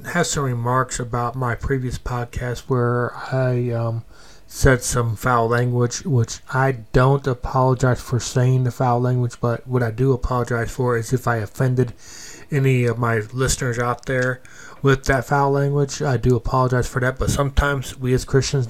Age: 20-39